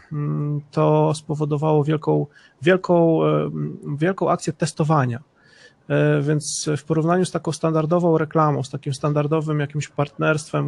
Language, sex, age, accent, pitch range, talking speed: Polish, male, 30-49, native, 145-160 Hz, 105 wpm